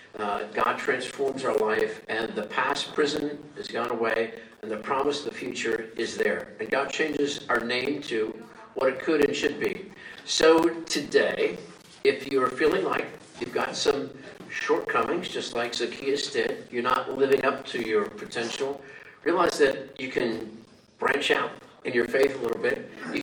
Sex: male